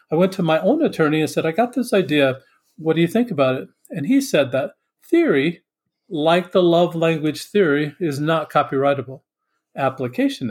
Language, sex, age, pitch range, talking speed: English, male, 40-59, 145-185 Hz, 185 wpm